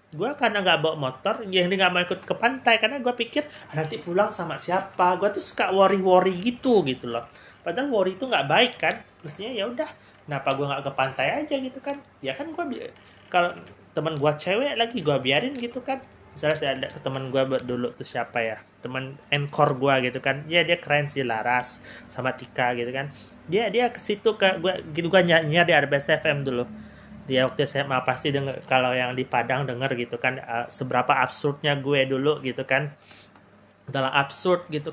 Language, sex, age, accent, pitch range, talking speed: Indonesian, male, 30-49, native, 130-185 Hz, 200 wpm